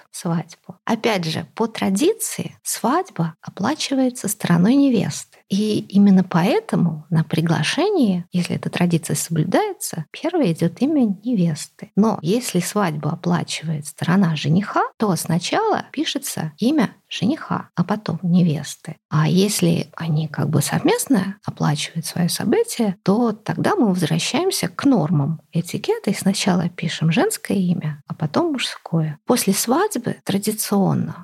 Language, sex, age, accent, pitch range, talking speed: Russian, female, 50-69, native, 175-240 Hz, 120 wpm